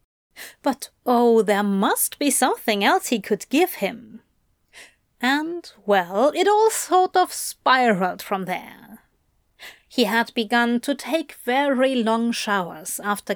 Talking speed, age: 130 wpm, 30-49